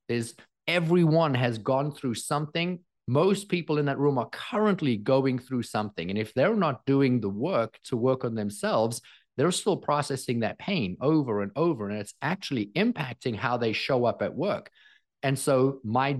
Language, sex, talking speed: English, male, 180 wpm